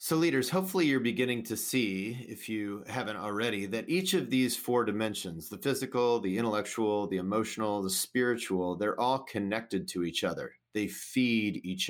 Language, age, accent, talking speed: English, 30-49, American, 170 wpm